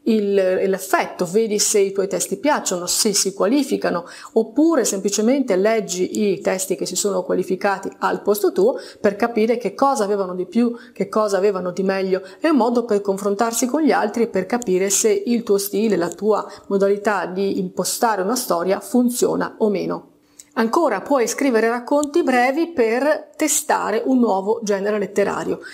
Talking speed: 165 wpm